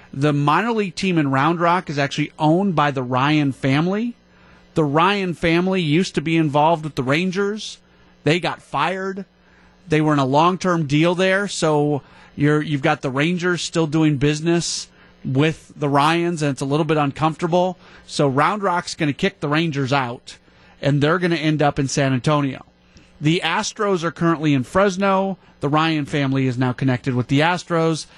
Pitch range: 135-170 Hz